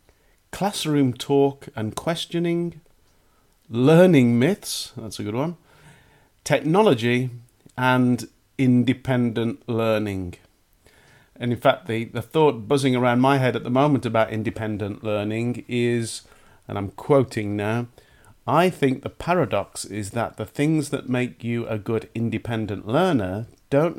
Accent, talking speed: British, 130 wpm